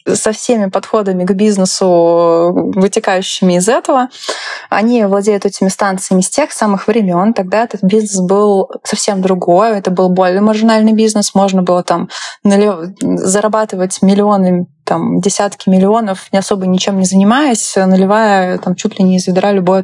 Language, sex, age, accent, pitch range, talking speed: Russian, female, 20-39, native, 185-215 Hz, 145 wpm